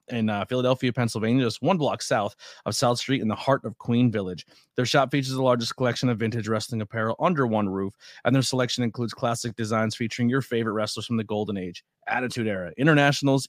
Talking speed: 210 wpm